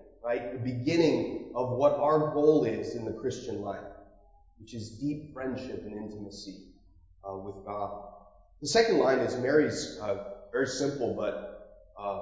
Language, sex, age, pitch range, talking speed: English, male, 30-49, 100-135 Hz, 150 wpm